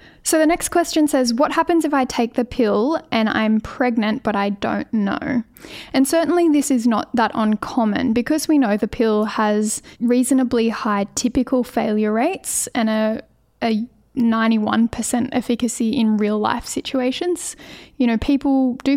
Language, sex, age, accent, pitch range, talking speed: English, female, 10-29, Australian, 220-260 Hz, 160 wpm